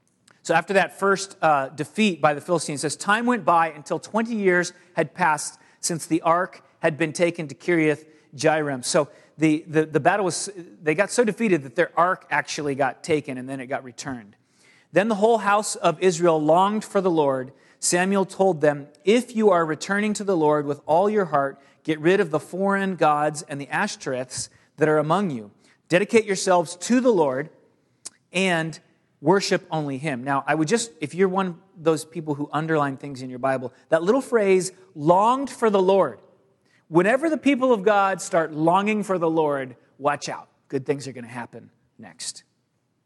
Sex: male